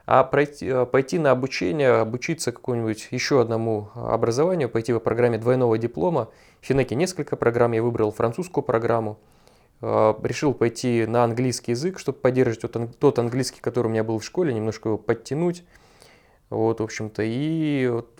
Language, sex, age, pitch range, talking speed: Russian, male, 20-39, 110-130 Hz, 150 wpm